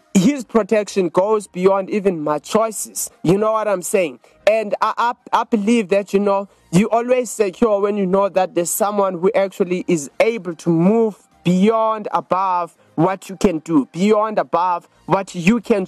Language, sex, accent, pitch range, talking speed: English, male, South African, 165-215 Hz, 175 wpm